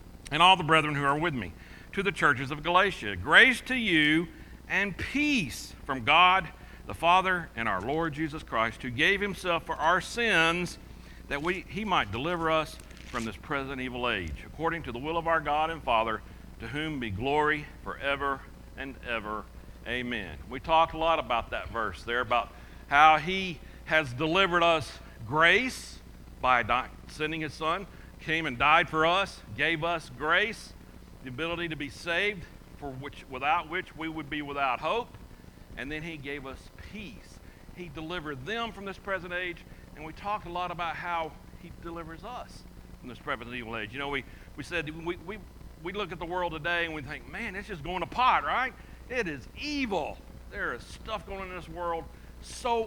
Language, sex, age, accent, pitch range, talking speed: English, male, 60-79, American, 125-175 Hz, 185 wpm